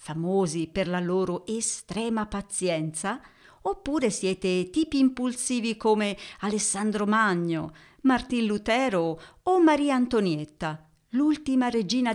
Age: 50-69